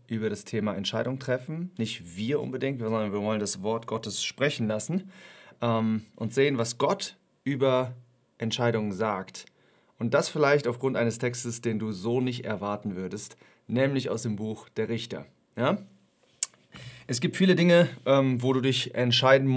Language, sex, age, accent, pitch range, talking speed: English, male, 30-49, German, 110-130 Hz, 150 wpm